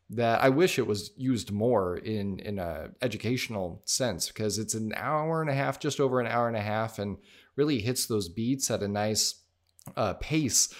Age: 30-49